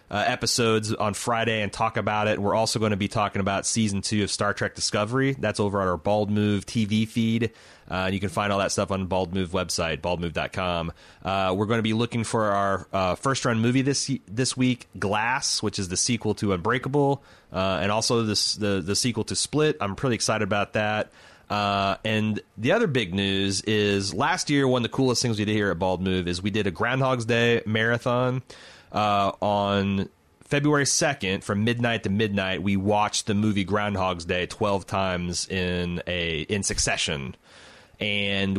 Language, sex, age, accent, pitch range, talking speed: English, male, 30-49, American, 100-120 Hz, 190 wpm